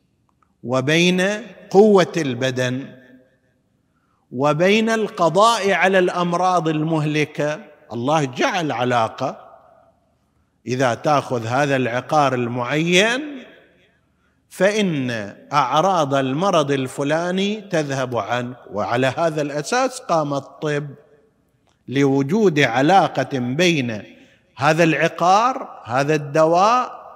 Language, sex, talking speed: Arabic, male, 75 wpm